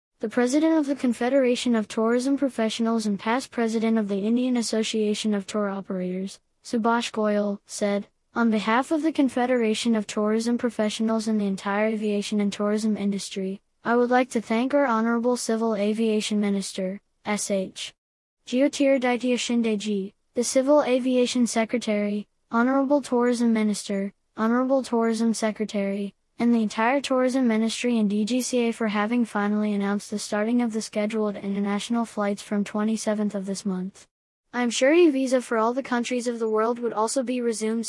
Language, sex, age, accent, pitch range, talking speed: English, female, 20-39, American, 210-245 Hz, 155 wpm